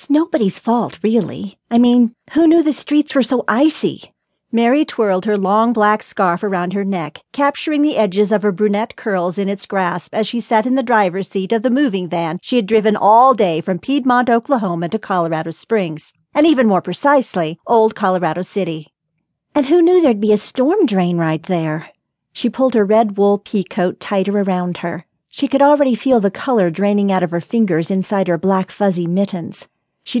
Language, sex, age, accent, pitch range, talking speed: English, female, 40-59, American, 180-235 Hz, 195 wpm